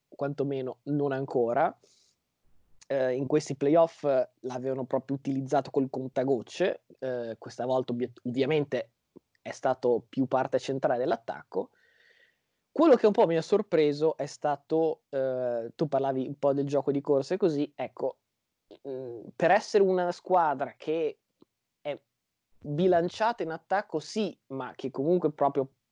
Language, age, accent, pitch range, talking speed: Italian, 20-39, native, 130-155 Hz, 135 wpm